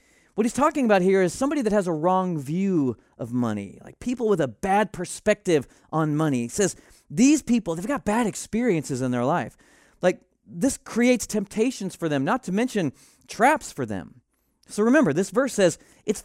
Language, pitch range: English, 145-220 Hz